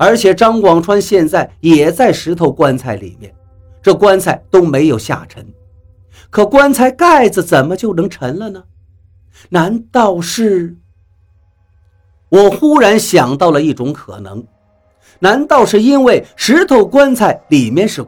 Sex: male